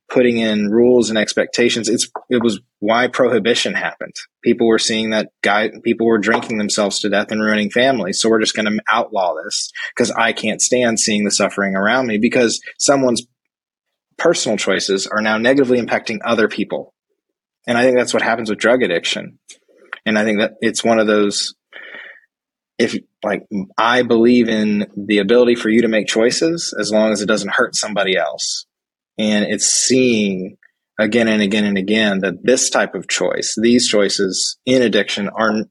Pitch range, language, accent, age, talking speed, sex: 105-120 Hz, English, American, 20-39, 175 wpm, male